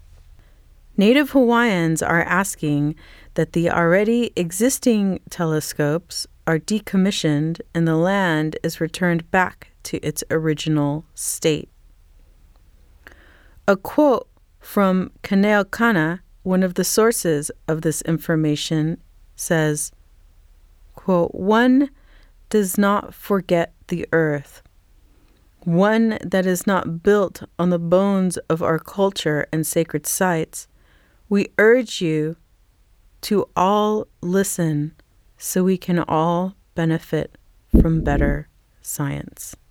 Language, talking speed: English, 105 wpm